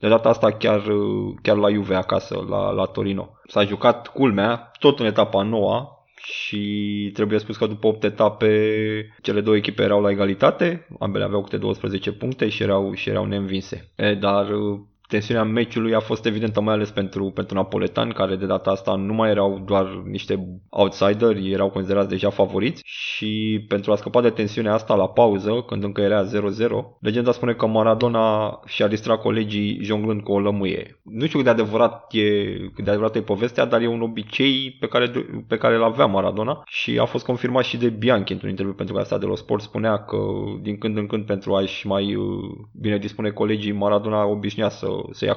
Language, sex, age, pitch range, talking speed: Romanian, male, 20-39, 100-110 Hz, 185 wpm